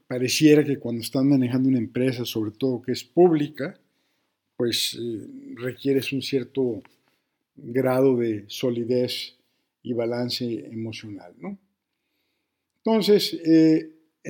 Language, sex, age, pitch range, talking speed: Spanish, male, 50-69, 120-145 Hz, 110 wpm